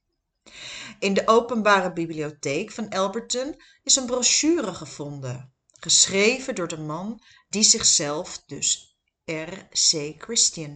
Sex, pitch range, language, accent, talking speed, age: female, 170-240 Hz, Dutch, Dutch, 105 wpm, 40-59